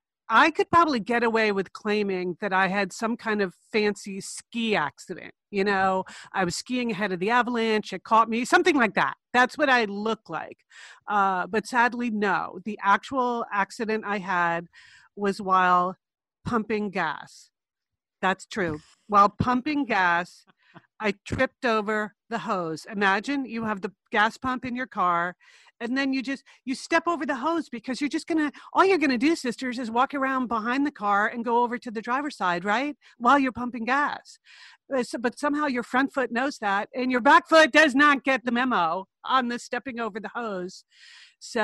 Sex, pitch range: female, 195-255 Hz